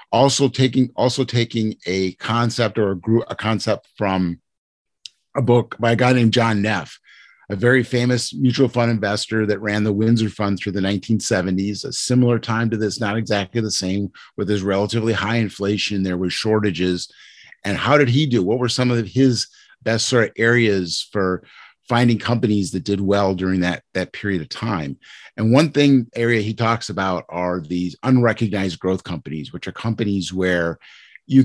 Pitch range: 95-115 Hz